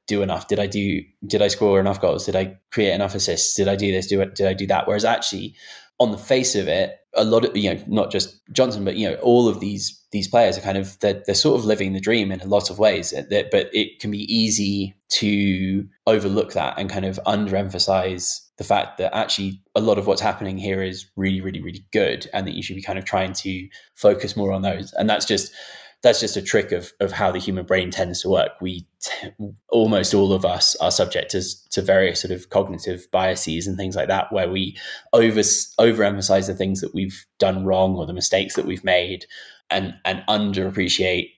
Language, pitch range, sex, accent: English, 95-105 Hz, male, British